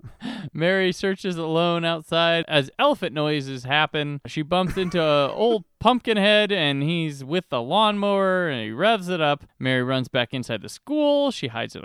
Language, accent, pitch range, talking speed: English, American, 135-195 Hz, 170 wpm